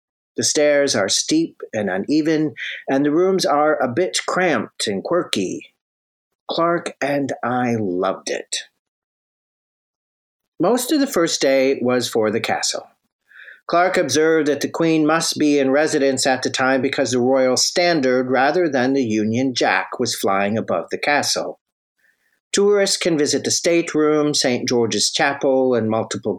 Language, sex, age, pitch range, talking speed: English, male, 50-69, 115-160 Hz, 150 wpm